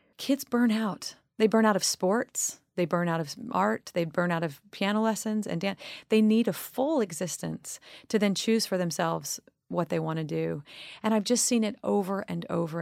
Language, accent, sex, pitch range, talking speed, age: English, American, female, 160-205 Hz, 205 wpm, 30-49